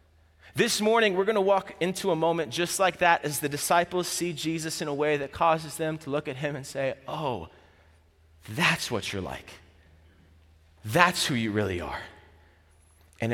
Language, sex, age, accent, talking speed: English, male, 30-49, American, 180 wpm